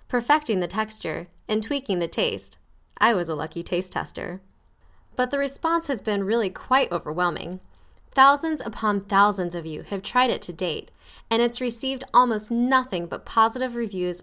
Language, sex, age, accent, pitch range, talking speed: English, female, 10-29, American, 180-245 Hz, 165 wpm